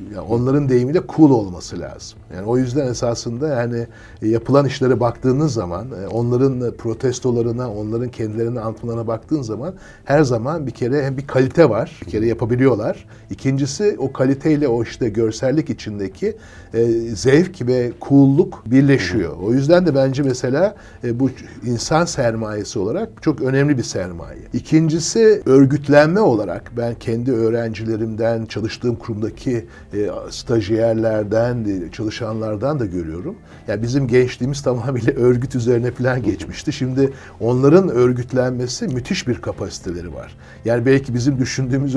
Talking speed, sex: 125 wpm, male